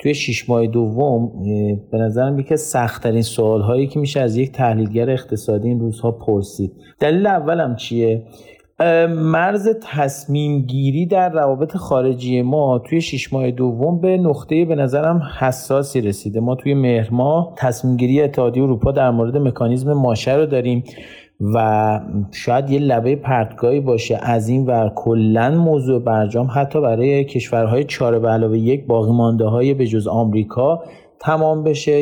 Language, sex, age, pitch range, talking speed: Persian, male, 40-59, 115-145 Hz, 145 wpm